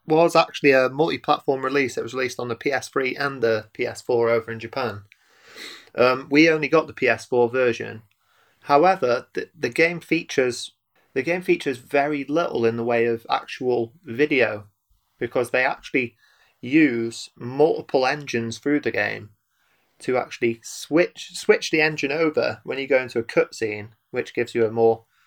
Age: 30-49